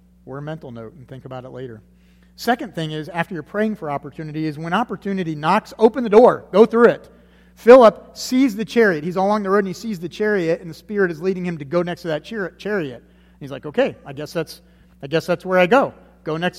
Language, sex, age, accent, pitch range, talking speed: English, male, 40-59, American, 135-210 Hz, 240 wpm